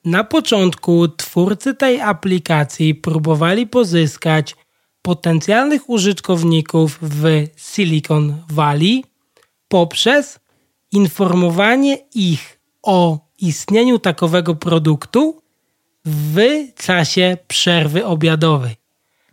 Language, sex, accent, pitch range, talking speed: Polish, male, native, 160-215 Hz, 70 wpm